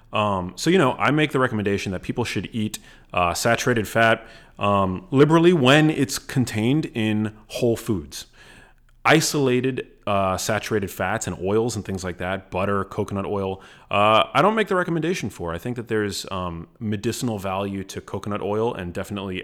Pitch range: 95-115 Hz